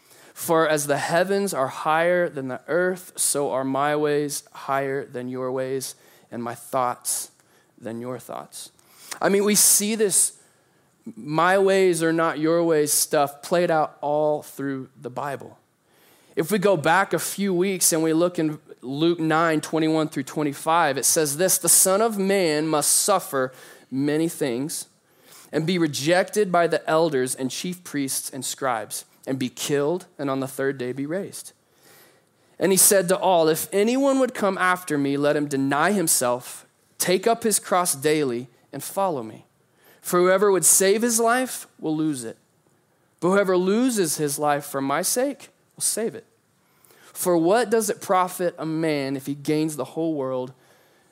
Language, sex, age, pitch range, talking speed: English, male, 20-39, 140-180 Hz, 170 wpm